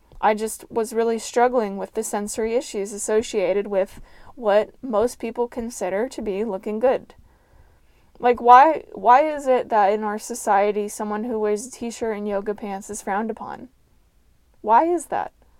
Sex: female